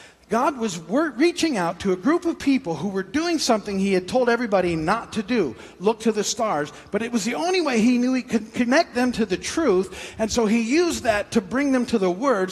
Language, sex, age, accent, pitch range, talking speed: English, male, 50-69, American, 155-230 Hz, 240 wpm